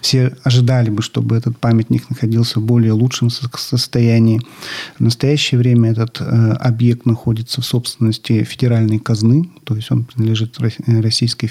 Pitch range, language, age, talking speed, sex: 115-130 Hz, Russian, 40-59, 140 wpm, male